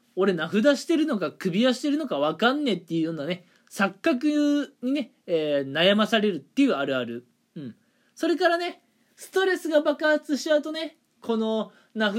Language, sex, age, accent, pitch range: Japanese, male, 20-39, native, 170-260 Hz